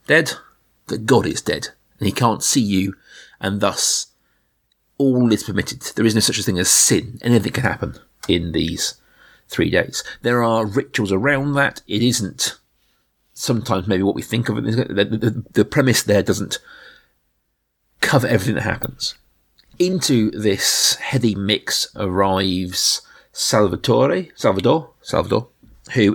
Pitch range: 95-120 Hz